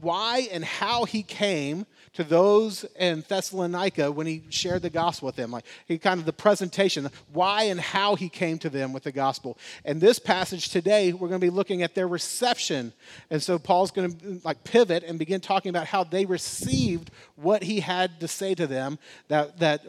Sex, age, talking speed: male, 40-59, 200 wpm